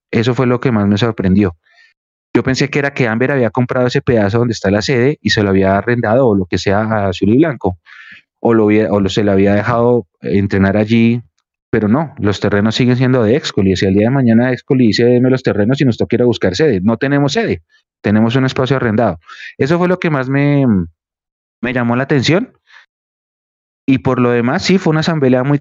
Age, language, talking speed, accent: 30-49, Spanish, 225 wpm, Colombian